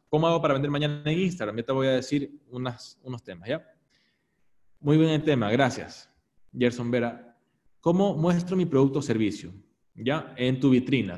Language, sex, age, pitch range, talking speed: Spanish, male, 20-39, 120-160 Hz, 175 wpm